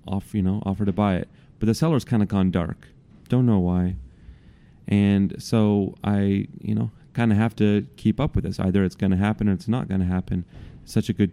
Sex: male